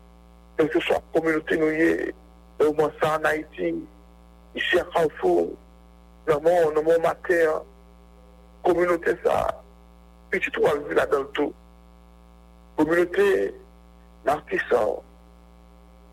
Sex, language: male, English